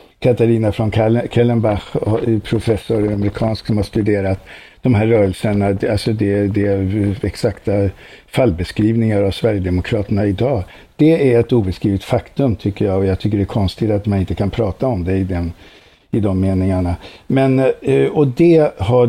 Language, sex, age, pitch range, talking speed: Swedish, male, 60-79, 100-120 Hz, 160 wpm